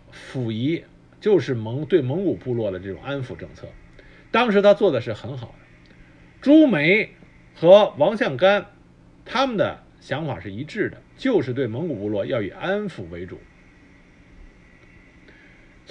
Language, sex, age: Chinese, male, 50-69